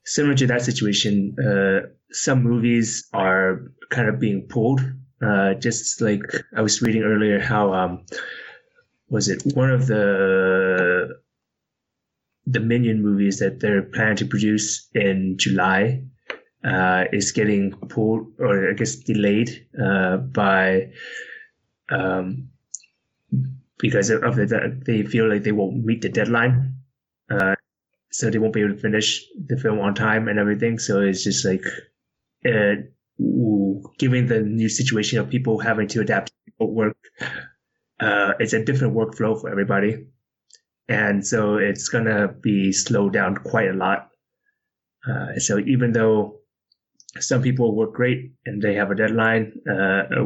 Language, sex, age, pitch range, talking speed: English, male, 20-39, 100-120 Hz, 145 wpm